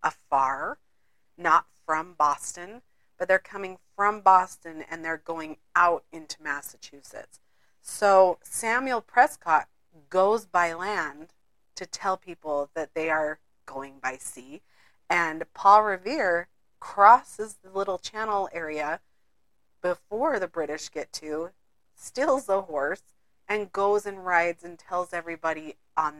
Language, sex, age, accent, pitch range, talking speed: English, female, 40-59, American, 155-195 Hz, 125 wpm